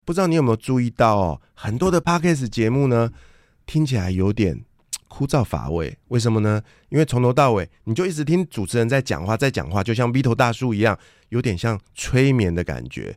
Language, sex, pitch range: Chinese, male, 85-120 Hz